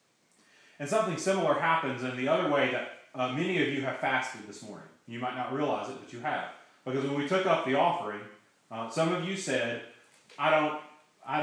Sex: male